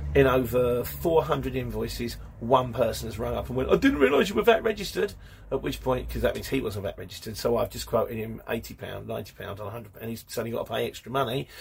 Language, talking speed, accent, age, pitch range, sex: English, 235 wpm, British, 40-59, 110-145 Hz, male